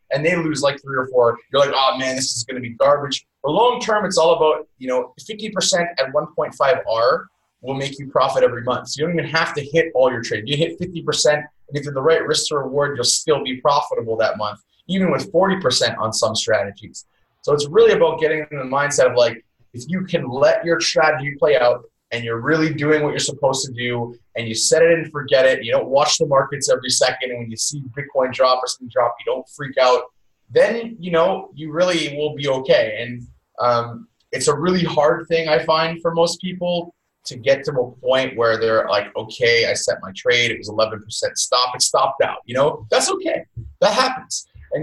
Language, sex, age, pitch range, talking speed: English, male, 20-39, 130-180 Hz, 225 wpm